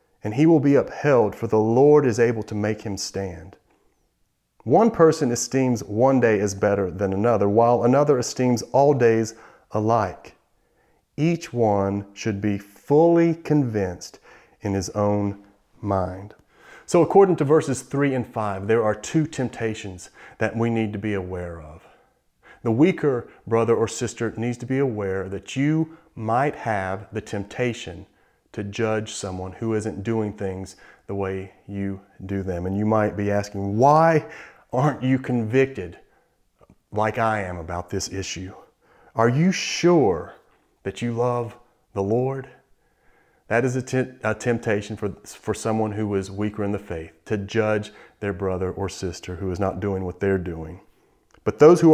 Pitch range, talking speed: 100-125 Hz, 160 wpm